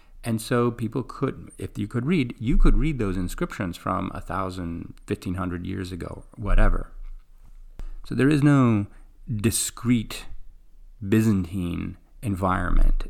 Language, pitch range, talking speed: English, 95-125 Hz, 120 wpm